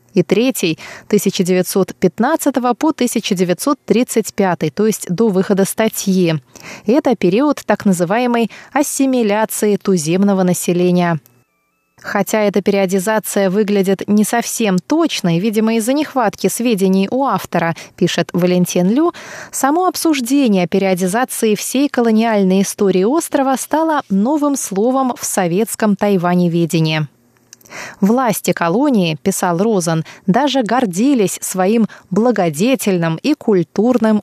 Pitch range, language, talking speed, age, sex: 185-245 Hz, Russian, 100 wpm, 20-39, female